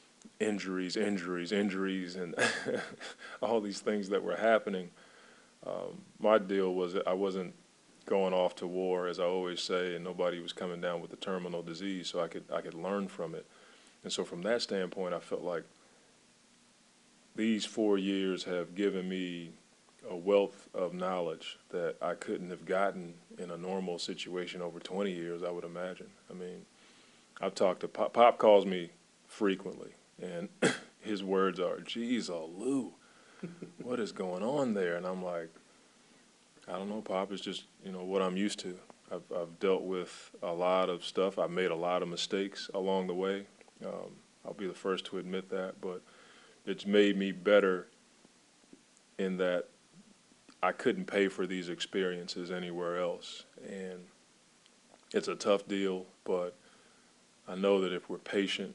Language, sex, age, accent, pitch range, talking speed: English, male, 20-39, American, 90-100 Hz, 165 wpm